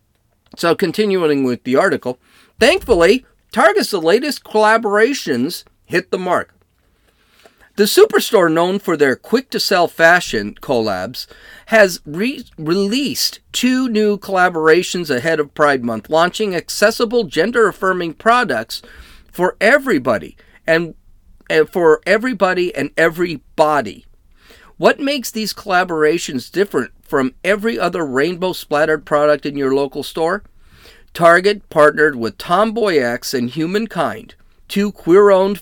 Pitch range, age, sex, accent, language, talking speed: 145-205 Hz, 40-59, male, American, English, 110 wpm